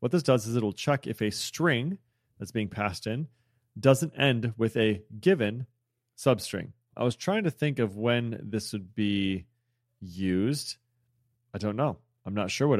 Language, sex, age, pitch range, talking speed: English, male, 30-49, 105-125 Hz, 175 wpm